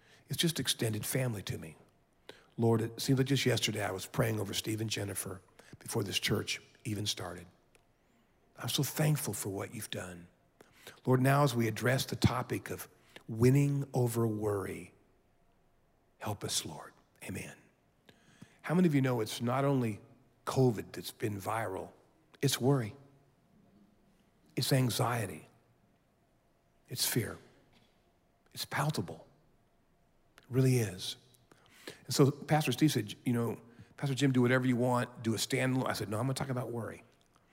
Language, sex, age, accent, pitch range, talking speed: English, male, 50-69, American, 110-135 Hz, 150 wpm